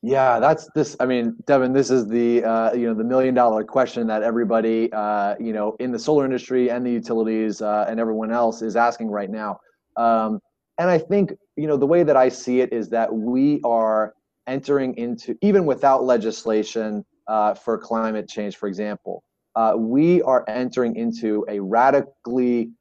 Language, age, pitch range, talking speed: English, 30-49, 110-125 Hz, 185 wpm